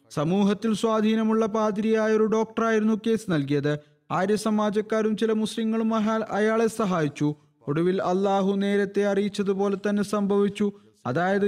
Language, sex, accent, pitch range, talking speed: Malayalam, male, native, 155-200 Hz, 115 wpm